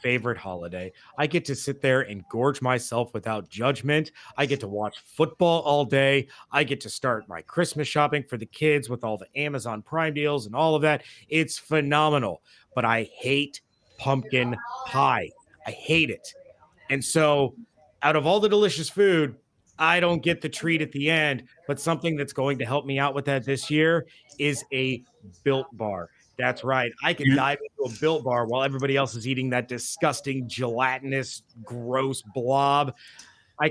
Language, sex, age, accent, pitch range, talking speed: English, male, 30-49, American, 125-150 Hz, 180 wpm